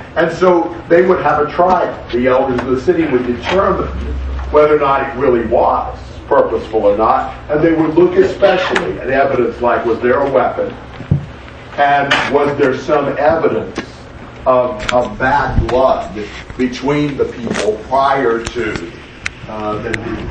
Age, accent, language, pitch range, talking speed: 50-69, American, English, 115-150 Hz, 155 wpm